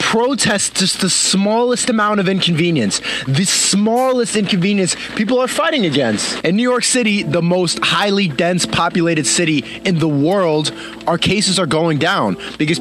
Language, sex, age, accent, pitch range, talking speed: English, male, 20-39, American, 160-205 Hz, 155 wpm